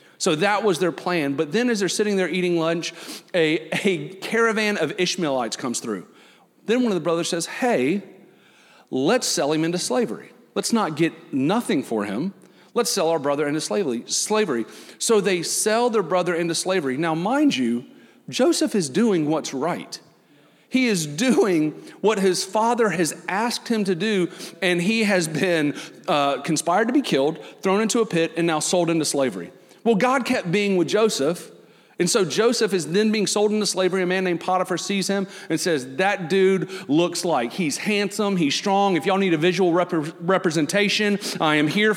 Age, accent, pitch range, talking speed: 40-59, American, 165-210 Hz, 185 wpm